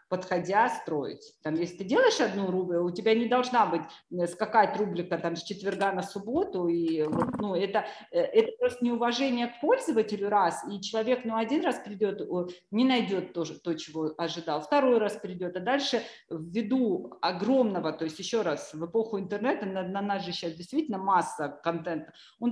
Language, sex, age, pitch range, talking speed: Russian, female, 40-59, 190-270 Hz, 165 wpm